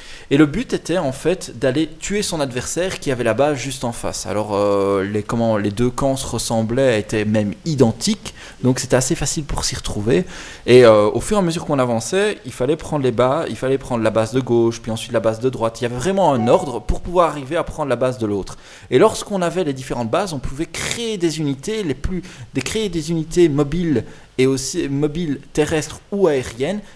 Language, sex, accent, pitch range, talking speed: French, male, French, 120-165 Hz, 225 wpm